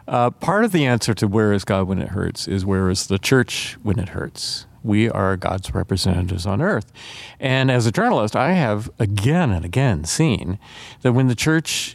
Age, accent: 50-69, American